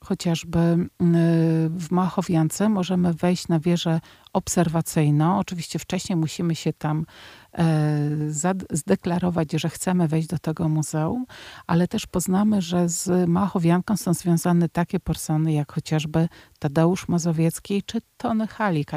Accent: native